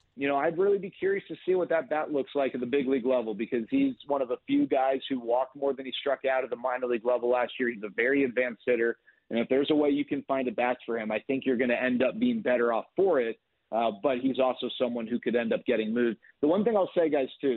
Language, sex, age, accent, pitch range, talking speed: English, male, 40-59, American, 125-165 Hz, 295 wpm